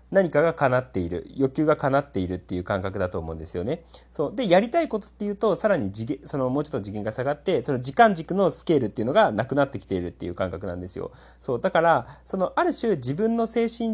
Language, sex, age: Japanese, male, 30-49